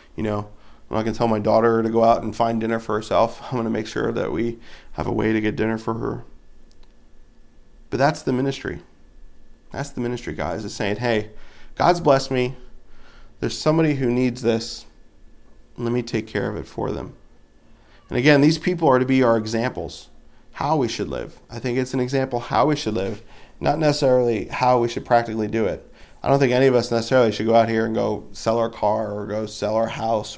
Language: English